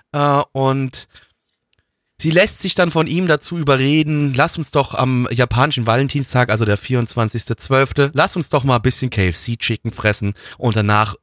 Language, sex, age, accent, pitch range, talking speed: German, male, 30-49, German, 115-160 Hz, 150 wpm